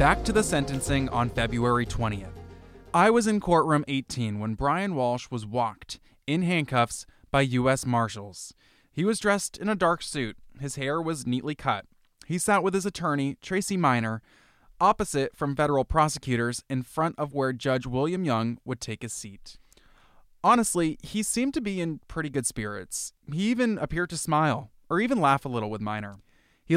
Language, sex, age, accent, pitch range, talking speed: English, male, 20-39, American, 120-165 Hz, 175 wpm